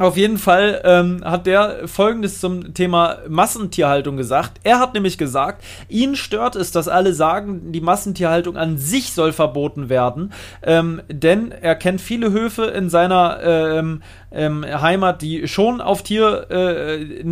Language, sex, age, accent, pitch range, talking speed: German, male, 30-49, German, 155-200 Hz, 150 wpm